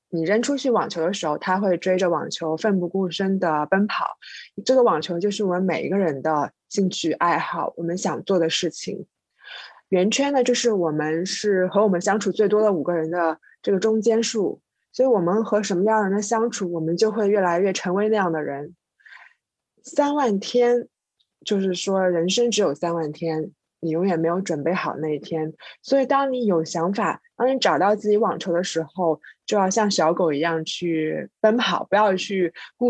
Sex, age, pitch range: female, 20-39, 170-220 Hz